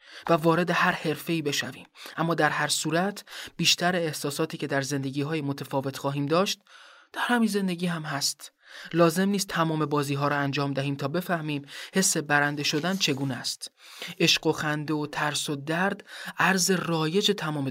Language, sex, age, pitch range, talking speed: Persian, male, 30-49, 140-165 Hz, 165 wpm